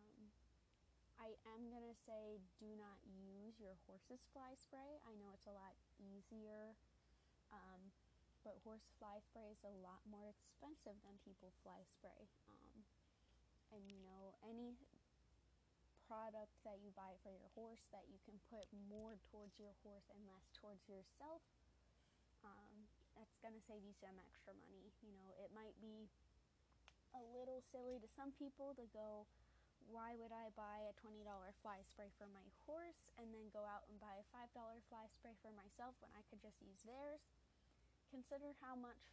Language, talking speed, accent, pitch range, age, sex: English, 165 wpm, American, 200-230 Hz, 20-39, female